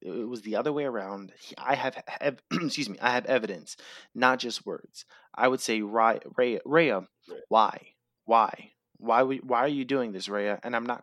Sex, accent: male, American